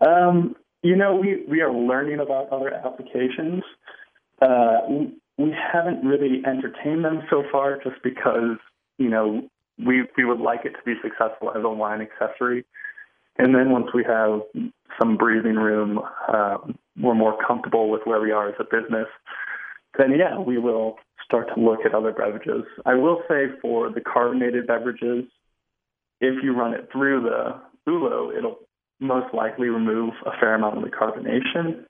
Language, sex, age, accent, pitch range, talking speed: English, male, 20-39, American, 115-140 Hz, 165 wpm